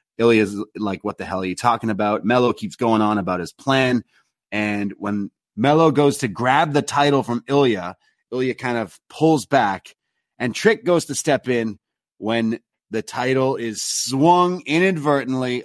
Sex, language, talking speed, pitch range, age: male, English, 170 wpm, 105-140 Hz, 30-49